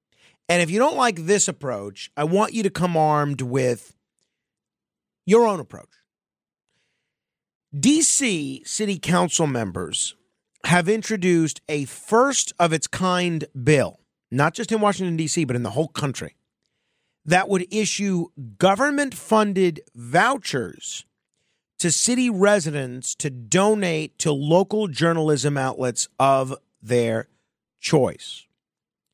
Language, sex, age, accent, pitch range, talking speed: English, male, 40-59, American, 135-185 Hz, 110 wpm